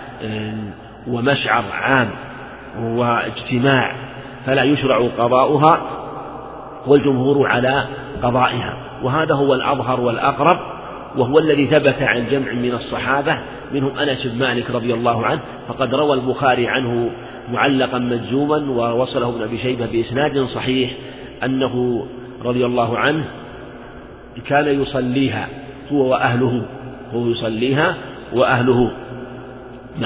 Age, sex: 50-69, male